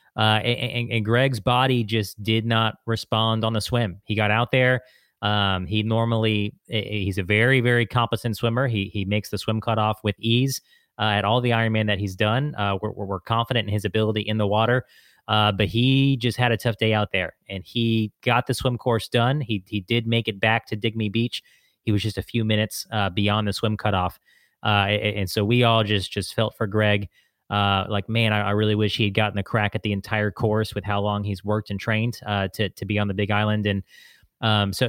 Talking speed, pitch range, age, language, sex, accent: 230 wpm, 105-115 Hz, 30-49, English, male, American